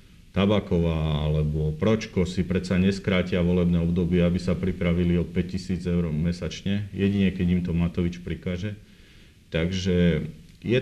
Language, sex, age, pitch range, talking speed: Slovak, male, 40-59, 85-95 Hz, 130 wpm